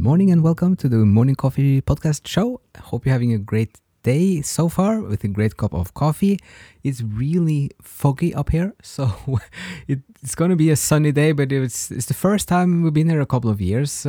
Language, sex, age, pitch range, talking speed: English, male, 20-39, 100-145 Hz, 215 wpm